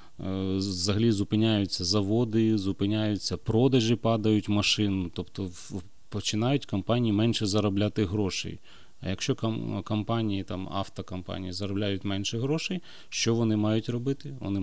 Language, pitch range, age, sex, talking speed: Ukrainian, 95-115 Hz, 30-49, male, 110 wpm